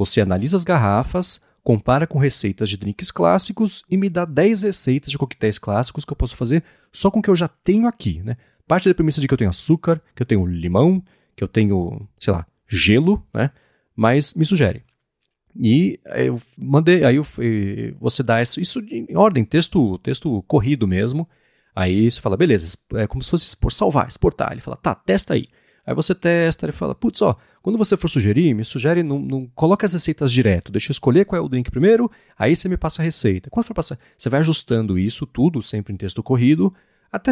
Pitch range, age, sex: 105-160 Hz, 30-49, male